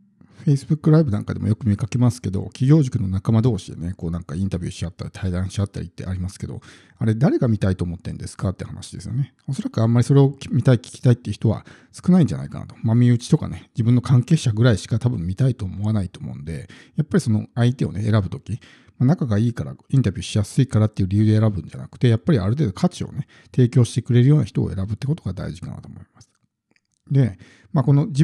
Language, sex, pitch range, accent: Japanese, male, 105-140 Hz, native